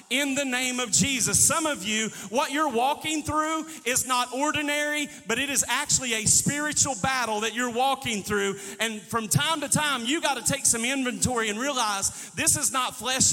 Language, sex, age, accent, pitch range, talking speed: English, male, 40-59, American, 180-235 Hz, 195 wpm